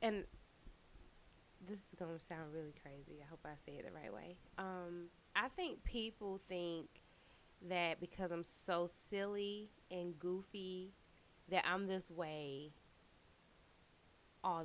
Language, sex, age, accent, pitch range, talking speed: English, female, 20-39, American, 170-205 Hz, 135 wpm